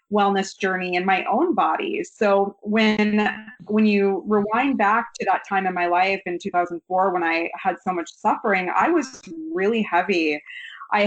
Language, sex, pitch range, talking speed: English, female, 180-225 Hz, 170 wpm